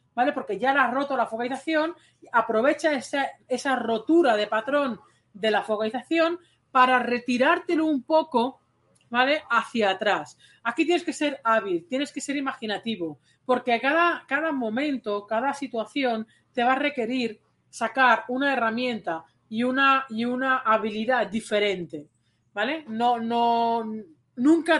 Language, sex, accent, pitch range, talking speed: Spanish, female, Spanish, 215-270 Hz, 140 wpm